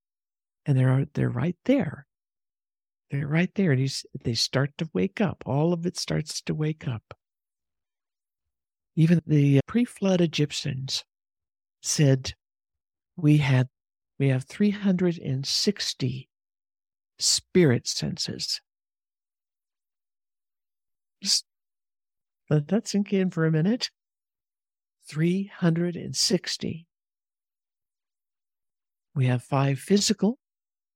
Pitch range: 135-180 Hz